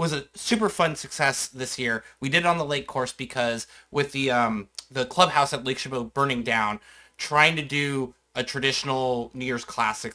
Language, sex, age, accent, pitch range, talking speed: English, male, 30-49, American, 120-140 Hz, 195 wpm